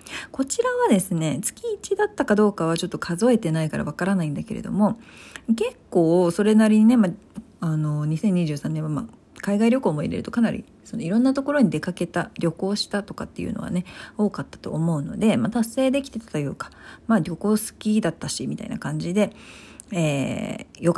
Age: 40-59